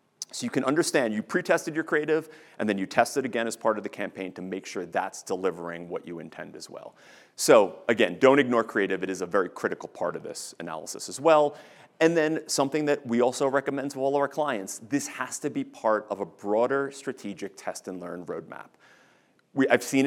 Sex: male